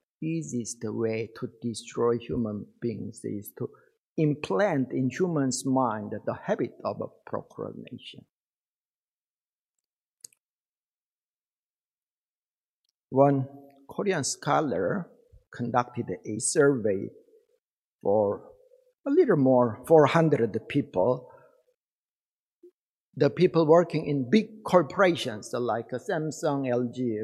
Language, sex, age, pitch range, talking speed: English, male, 50-69, 130-205 Hz, 85 wpm